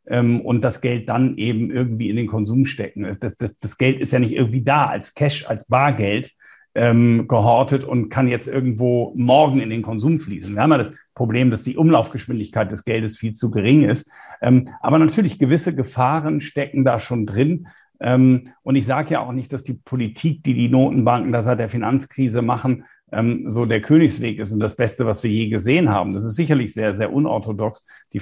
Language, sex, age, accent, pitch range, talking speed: German, male, 50-69, German, 110-135 Hz, 200 wpm